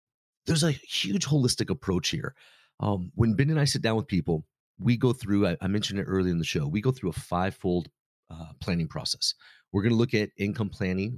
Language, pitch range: English, 100-135 Hz